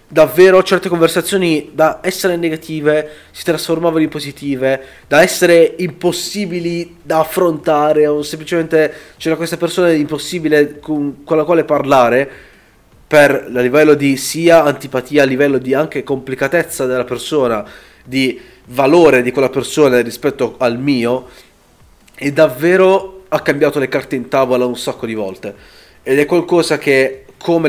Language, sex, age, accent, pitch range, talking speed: Italian, male, 30-49, native, 135-165 Hz, 135 wpm